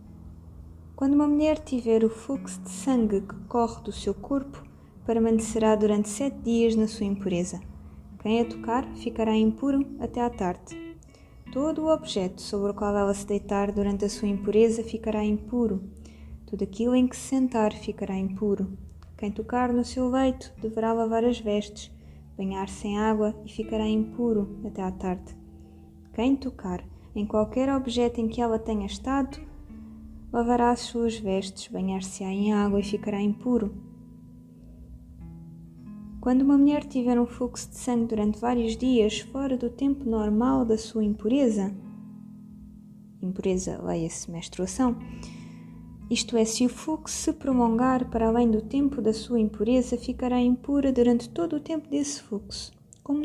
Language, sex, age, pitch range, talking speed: Portuguese, female, 20-39, 190-240 Hz, 150 wpm